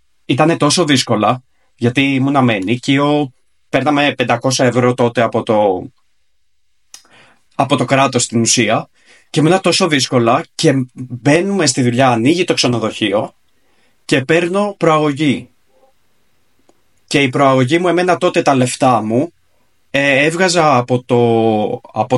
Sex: male